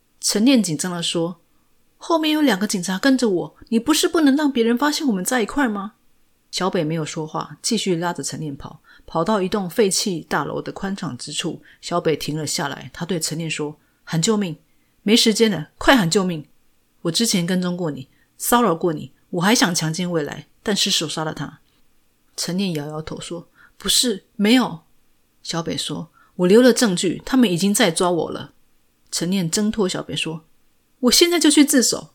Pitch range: 160-225 Hz